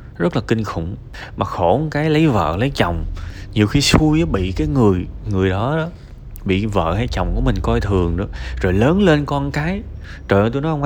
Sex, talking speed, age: male, 215 wpm, 20-39